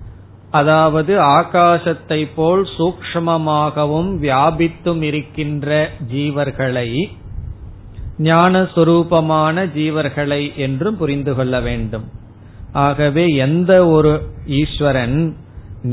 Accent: native